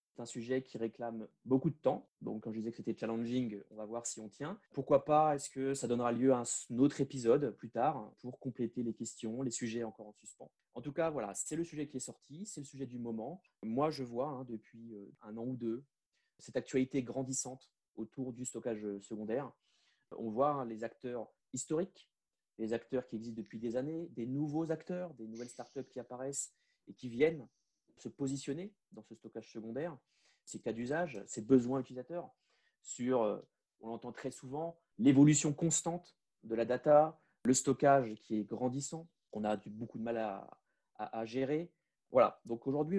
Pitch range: 115-140 Hz